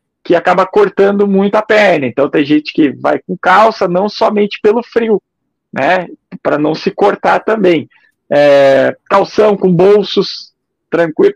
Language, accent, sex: Portuguese, Brazilian, male